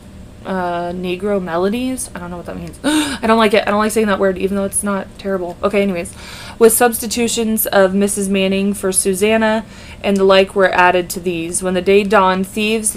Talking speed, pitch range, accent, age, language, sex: 210 wpm, 180-210 Hz, American, 20-39, English, female